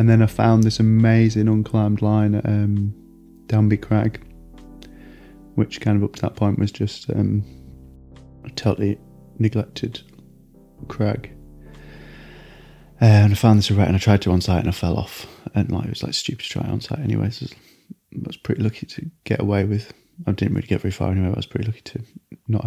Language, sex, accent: English, male, British